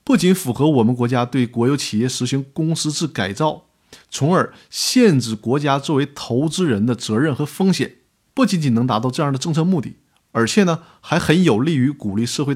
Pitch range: 115-155 Hz